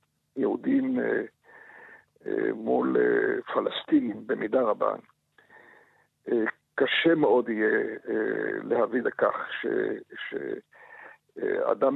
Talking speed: 55 wpm